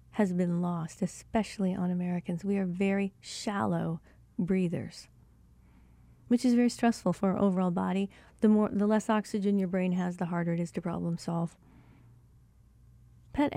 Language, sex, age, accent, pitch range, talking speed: English, female, 40-59, American, 180-245 Hz, 155 wpm